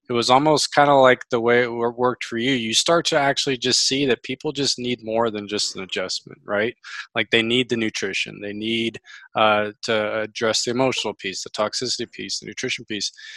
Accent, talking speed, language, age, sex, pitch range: American, 210 wpm, English, 20-39, male, 110-135 Hz